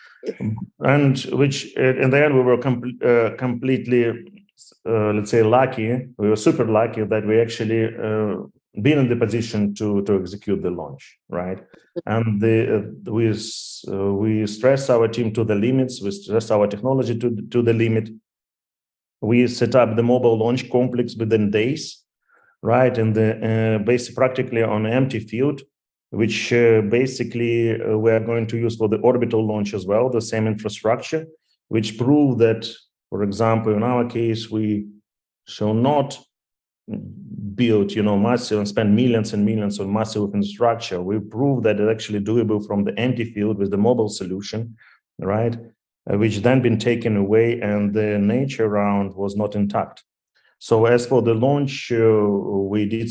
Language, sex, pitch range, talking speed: English, male, 105-120 Hz, 165 wpm